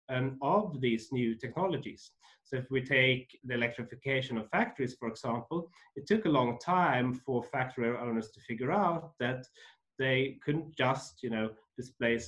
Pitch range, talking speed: 120-145 Hz, 160 wpm